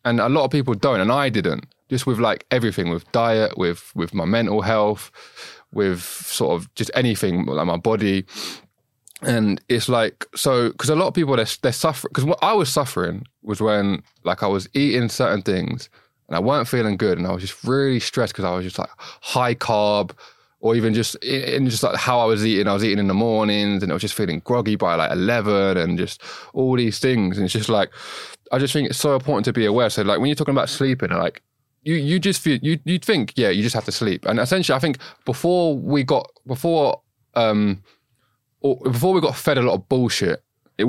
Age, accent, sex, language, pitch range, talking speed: 20-39, British, male, English, 95-130 Hz, 225 wpm